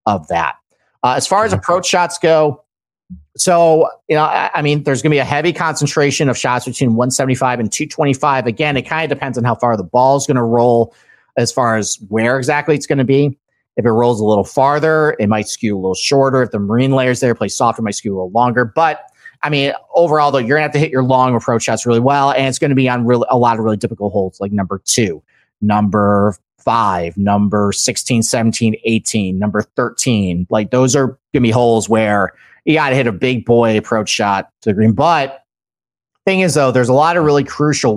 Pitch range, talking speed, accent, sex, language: 110-140 Hz, 230 wpm, American, male, English